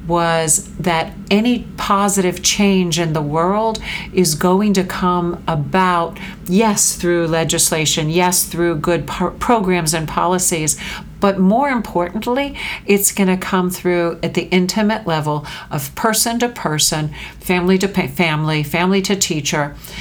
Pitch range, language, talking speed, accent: 155-190 Hz, English, 130 wpm, American